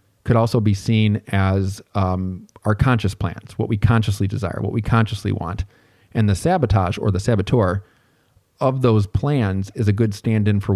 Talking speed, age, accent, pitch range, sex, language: 175 wpm, 40-59, American, 100-115 Hz, male, English